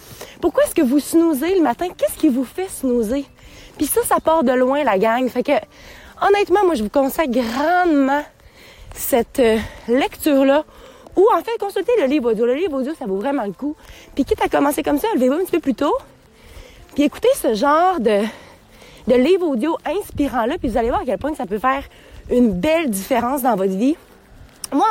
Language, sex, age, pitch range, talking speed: French, female, 30-49, 265-355 Hz, 200 wpm